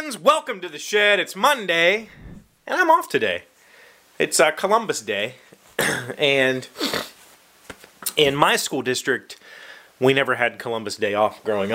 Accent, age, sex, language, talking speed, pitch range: American, 30-49, male, English, 135 wpm, 100-140 Hz